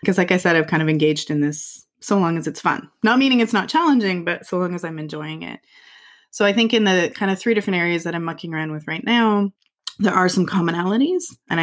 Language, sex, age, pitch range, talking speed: English, female, 20-39, 165-210 Hz, 255 wpm